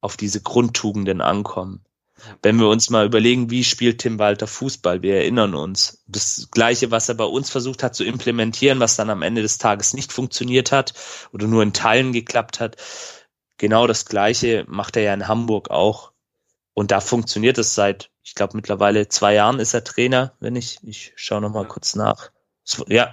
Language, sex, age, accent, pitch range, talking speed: German, male, 30-49, German, 105-125 Hz, 190 wpm